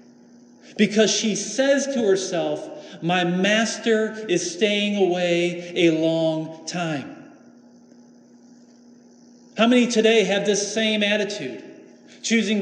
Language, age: English, 40-59